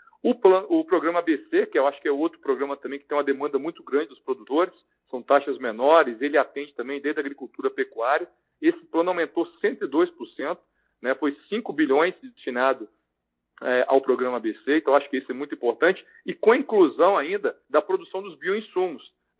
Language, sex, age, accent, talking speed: Portuguese, male, 40-59, Brazilian, 195 wpm